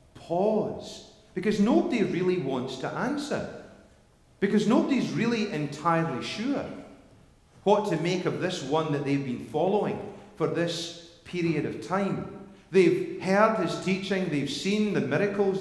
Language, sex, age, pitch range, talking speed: English, male, 40-59, 155-210 Hz, 130 wpm